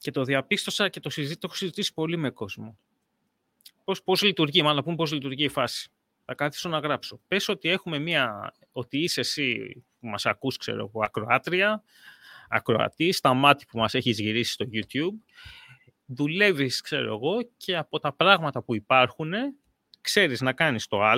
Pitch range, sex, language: 125-195 Hz, male, Greek